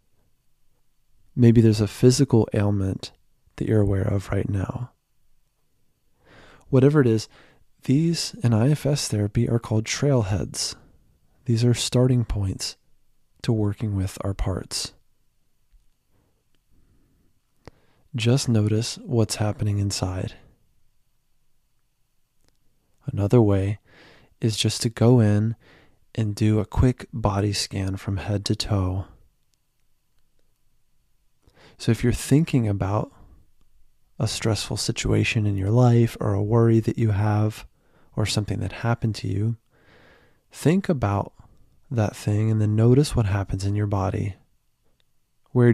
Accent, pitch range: American, 105-125 Hz